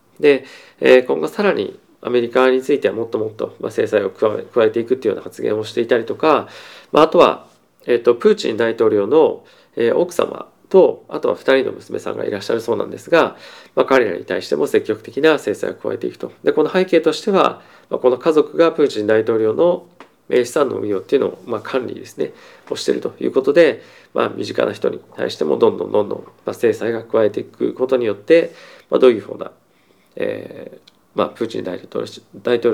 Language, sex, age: Japanese, male, 40-59